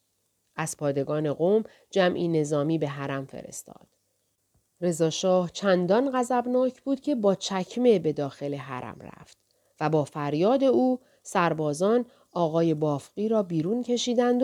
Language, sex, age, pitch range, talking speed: Persian, female, 40-59, 155-220 Hz, 125 wpm